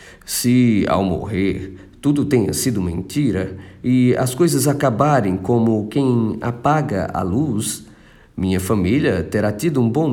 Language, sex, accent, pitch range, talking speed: Portuguese, male, Brazilian, 95-125 Hz, 130 wpm